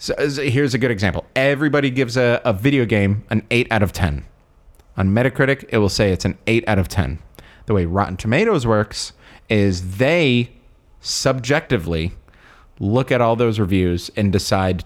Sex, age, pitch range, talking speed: male, 30-49, 95-120 Hz, 170 wpm